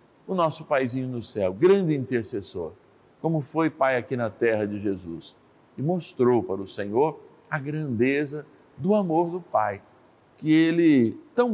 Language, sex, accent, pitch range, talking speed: Portuguese, male, Brazilian, 115-160 Hz, 150 wpm